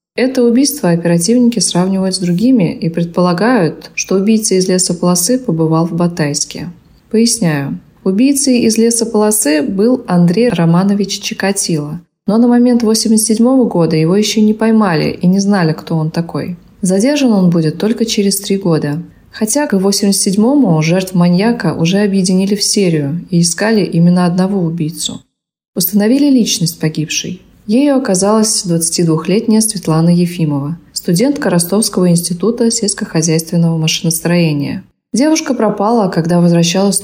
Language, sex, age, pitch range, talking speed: Russian, female, 20-39, 170-225 Hz, 125 wpm